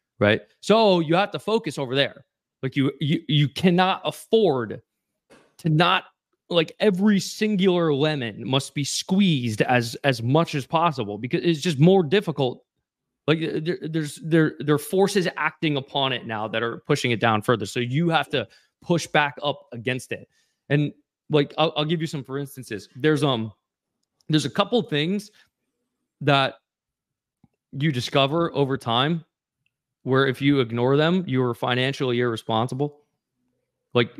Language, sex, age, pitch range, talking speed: English, male, 20-39, 120-155 Hz, 155 wpm